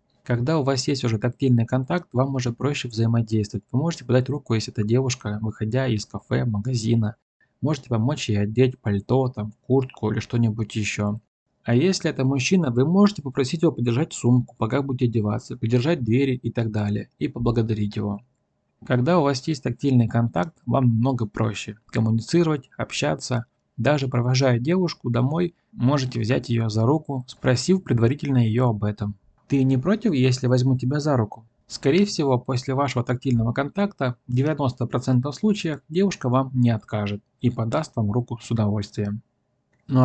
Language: Russian